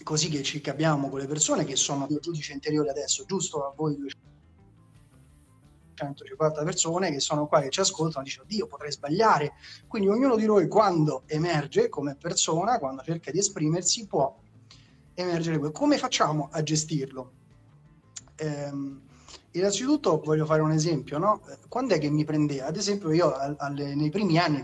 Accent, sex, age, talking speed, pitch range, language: native, male, 30-49, 160 wpm, 145-190 Hz, Italian